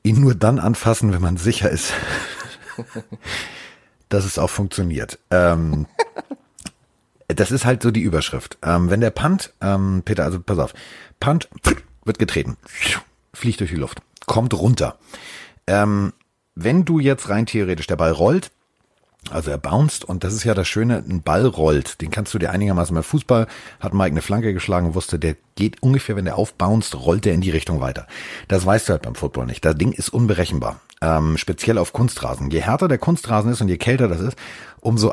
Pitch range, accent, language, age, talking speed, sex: 90-120 Hz, German, German, 40-59, 190 wpm, male